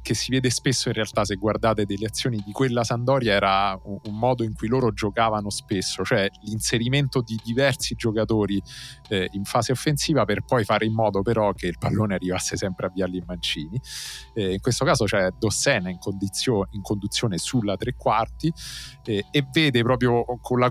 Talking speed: 190 wpm